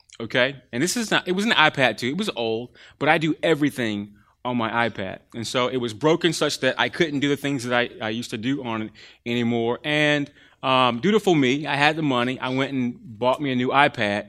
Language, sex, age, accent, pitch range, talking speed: English, male, 30-49, American, 130-155 Hz, 240 wpm